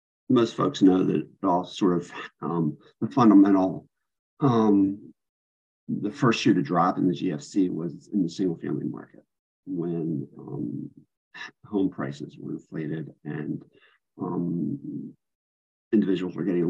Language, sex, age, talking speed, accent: English, male, 50-69, 130 wpm, American